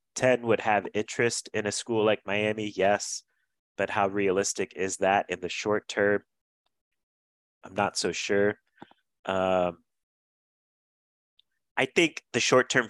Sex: male